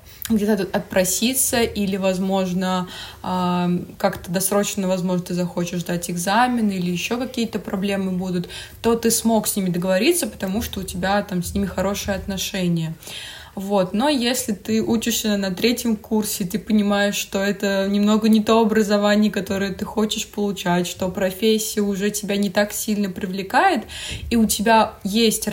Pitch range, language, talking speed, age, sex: 185-215 Hz, Russian, 150 wpm, 20-39, female